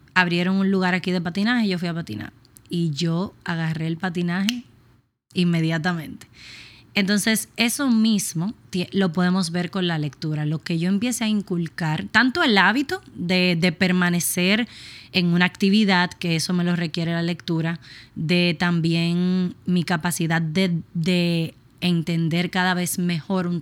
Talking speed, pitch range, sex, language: 145 wpm, 160-185 Hz, female, Spanish